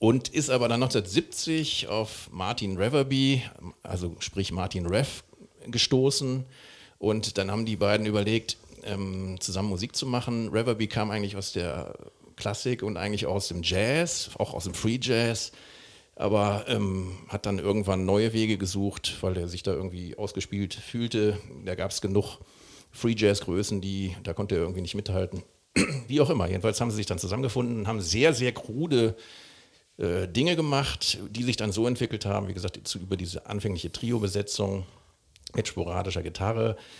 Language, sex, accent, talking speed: German, male, German, 160 wpm